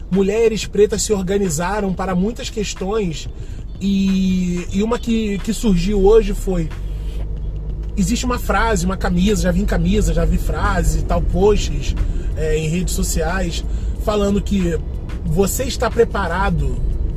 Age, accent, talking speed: 20-39, Brazilian, 135 wpm